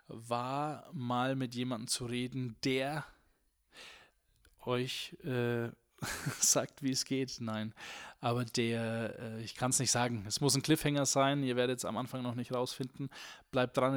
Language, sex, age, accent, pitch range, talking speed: German, male, 20-39, German, 120-145 Hz, 160 wpm